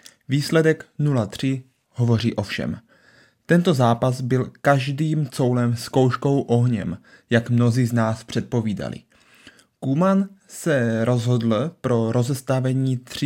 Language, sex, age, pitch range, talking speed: Czech, male, 30-49, 120-145 Hz, 100 wpm